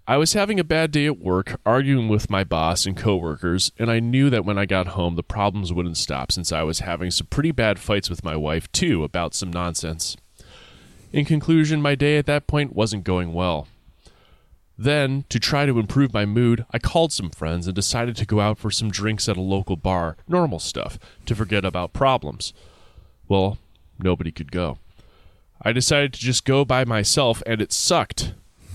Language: English